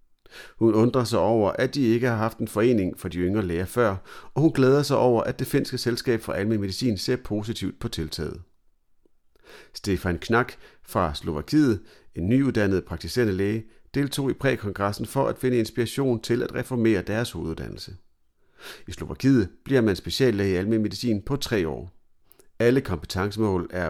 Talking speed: 165 wpm